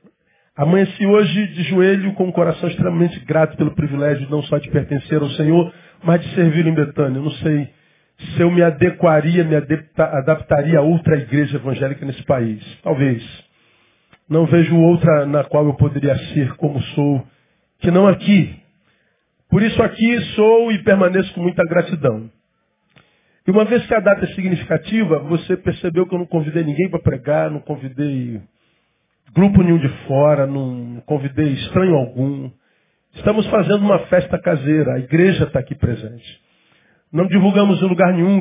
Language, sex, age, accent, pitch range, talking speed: Portuguese, male, 40-59, Brazilian, 145-185 Hz, 160 wpm